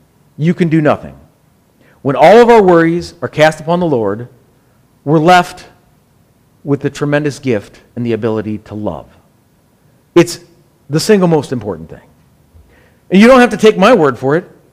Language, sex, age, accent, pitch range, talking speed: English, male, 40-59, American, 145-215 Hz, 165 wpm